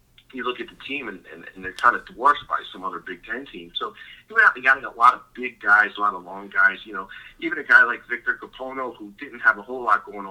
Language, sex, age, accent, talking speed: English, male, 30-49, American, 275 wpm